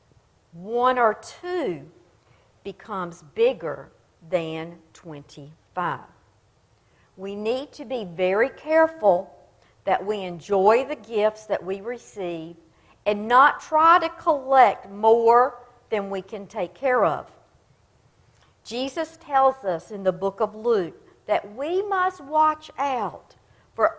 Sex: female